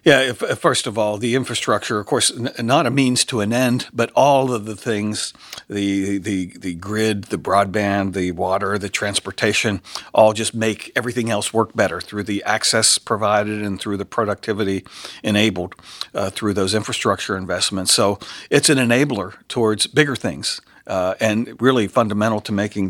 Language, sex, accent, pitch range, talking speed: English, male, American, 105-120 Hz, 170 wpm